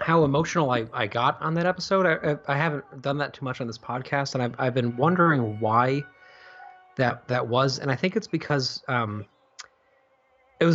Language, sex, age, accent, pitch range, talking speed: English, male, 20-39, American, 115-145 Hz, 195 wpm